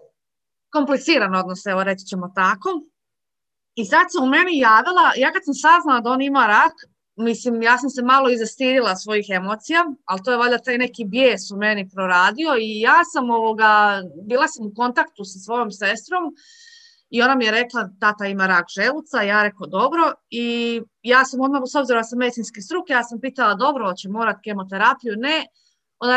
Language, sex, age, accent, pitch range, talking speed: Croatian, female, 30-49, native, 215-290 Hz, 185 wpm